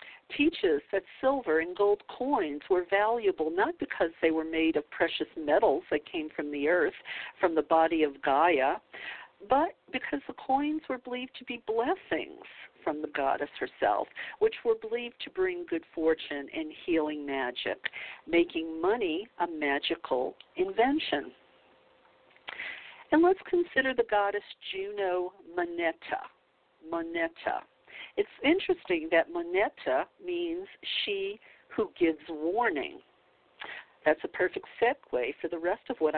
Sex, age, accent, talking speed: female, 50-69, American, 135 wpm